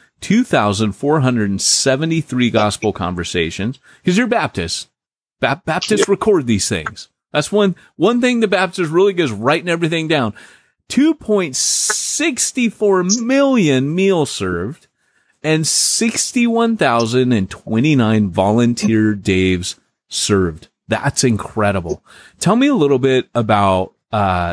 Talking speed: 130 wpm